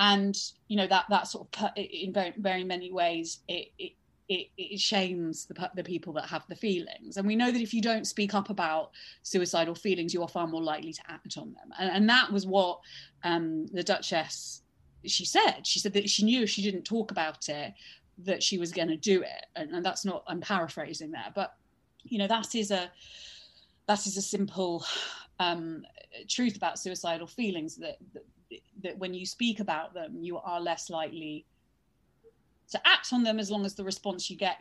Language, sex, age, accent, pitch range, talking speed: English, female, 30-49, British, 170-210 Hz, 205 wpm